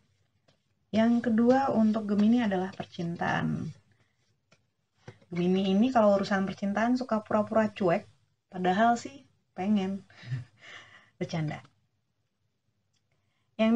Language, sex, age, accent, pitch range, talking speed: Indonesian, female, 20-39, native, 165-205 Hz, 85 wpm